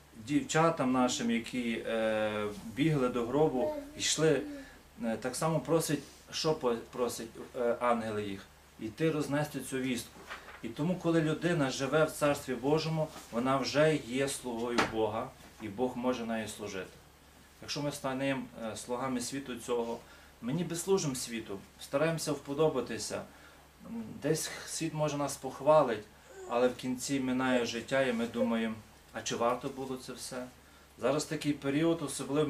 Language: Ukrainian